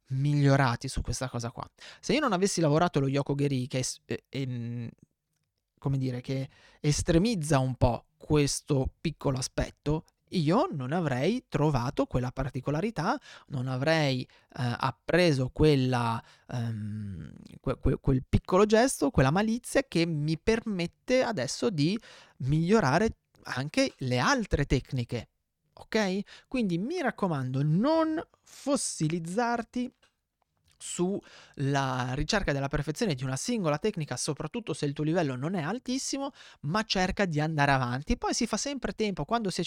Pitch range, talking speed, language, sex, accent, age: 135-185 Hz, 130 wpm, Italian, male, native, 30-49